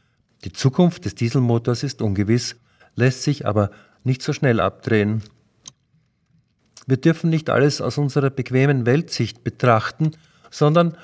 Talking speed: 125 wpm